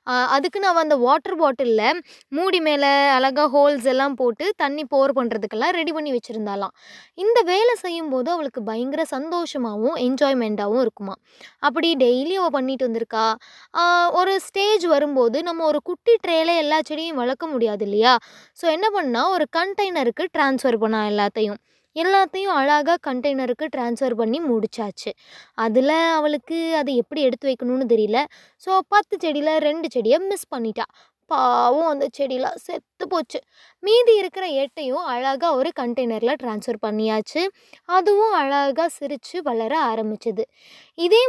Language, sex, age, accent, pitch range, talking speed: Tamil, female, 20-39, native, 245-340 Hz, 130 wpm